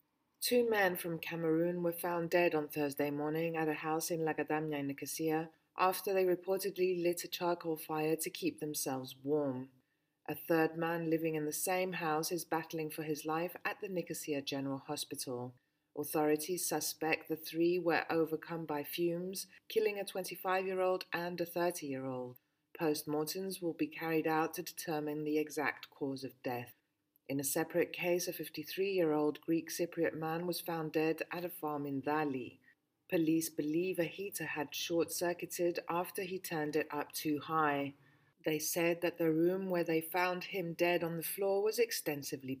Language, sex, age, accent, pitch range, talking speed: English, female, 30-49, British, 150-175 Hz, 165 wpm